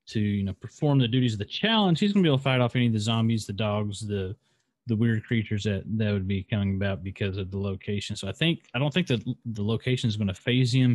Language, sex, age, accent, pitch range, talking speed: English, male, 30-49, American, 100-120 Hz, 270 wpm